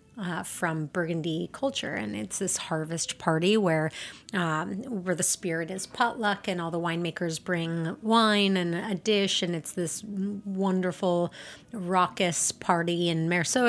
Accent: American